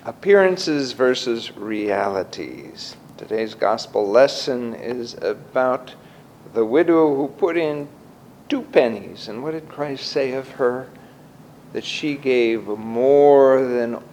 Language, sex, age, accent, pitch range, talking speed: English, male, 50-69, American, 120-170 Hz, 115 wpm